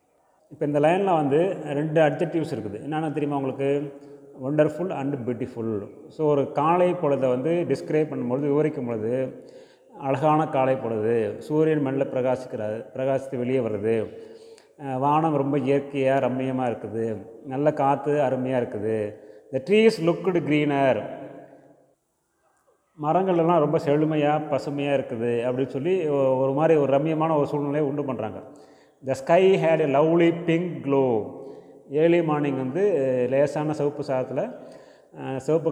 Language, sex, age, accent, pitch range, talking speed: Tamil, male, 30-49, native, 130-155 Hz, 120 wpm